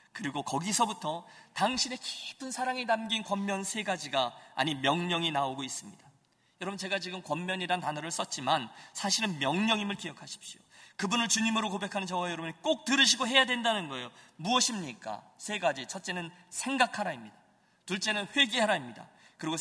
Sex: male